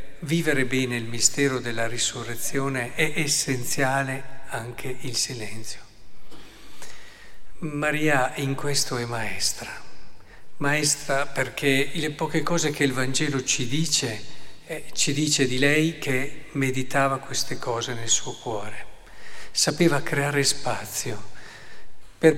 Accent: native